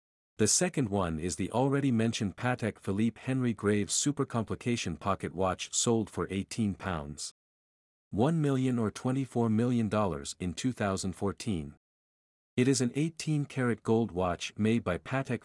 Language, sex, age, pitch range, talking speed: English, male, 50-69, 90-125 Hz, 145 wpm